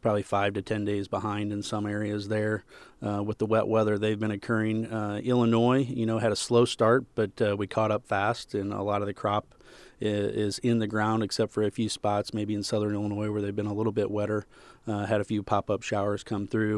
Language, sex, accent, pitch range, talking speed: English, male, American, 105-115 Hz, 240 wpm